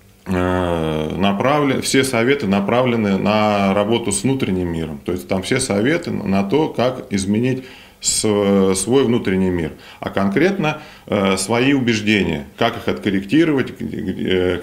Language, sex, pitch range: Russian, male, 95-120 Hz